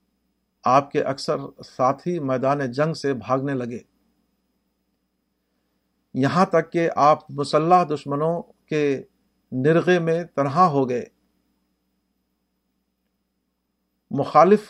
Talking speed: 90 wpm